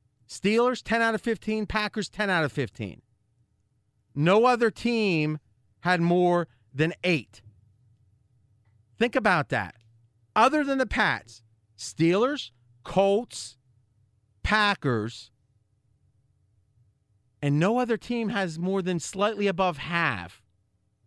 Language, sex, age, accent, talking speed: English, male, 30-49, American, 105 wpm